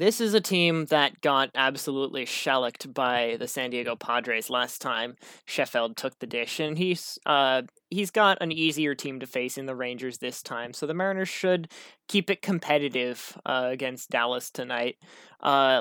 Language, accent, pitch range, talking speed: English, American, 135-160 Hz, 170 wpm